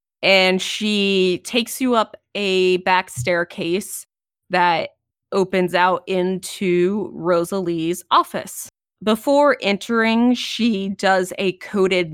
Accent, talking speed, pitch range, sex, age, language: American, 100 wpm, 170-200 Hz, female, 20-39, English